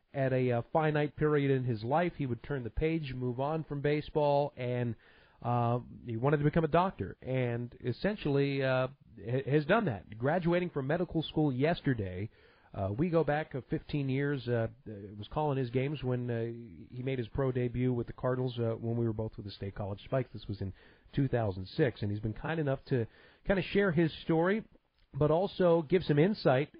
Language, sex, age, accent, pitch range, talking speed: English, male, 40-59, American, 120-155 Hz, 195 wpm